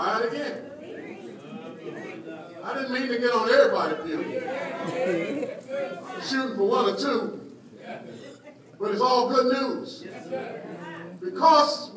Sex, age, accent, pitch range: male, 50-69, American, 195-260 Hz